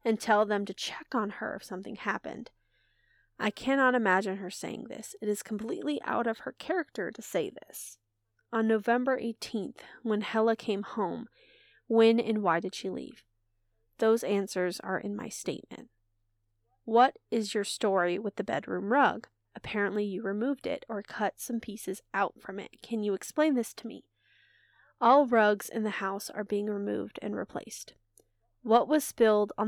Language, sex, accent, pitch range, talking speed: English, female, American, 185-235 Hz, 170 wpm